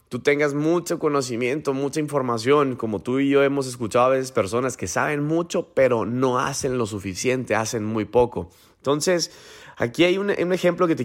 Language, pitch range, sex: Spanish, 125-160 Hz, male